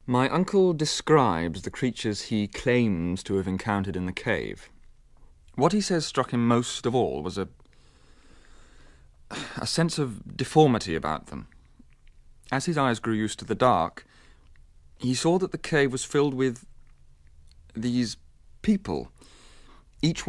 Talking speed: 140 wpm